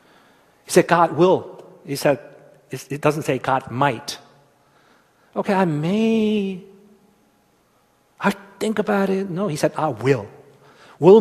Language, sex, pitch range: Korean, male, 135-190 Hz